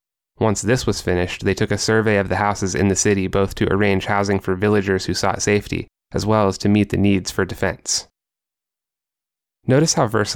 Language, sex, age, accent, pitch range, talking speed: English, male, 20-39, American, 95-110 Hz, 205 wpm